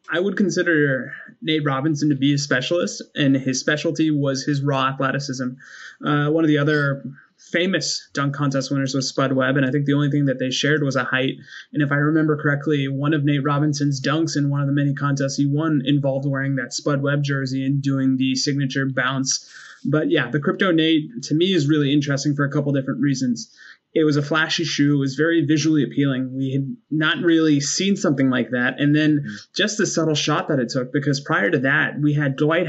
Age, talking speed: 20-39, 215 wpm